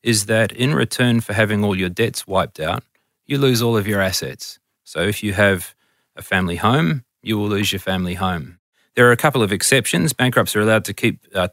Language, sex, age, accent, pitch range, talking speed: English, male, 30-49, Australian, 100-120 Hz, 220 wpm